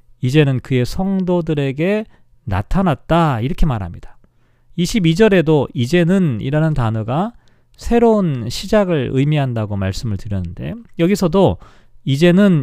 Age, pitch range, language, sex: 40-59, 120-175 Hz, Korean, male